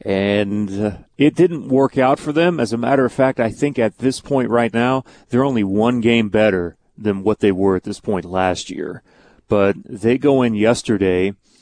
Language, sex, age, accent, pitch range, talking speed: English, male, 30-49, American, 105-135 Hz, 195 wpm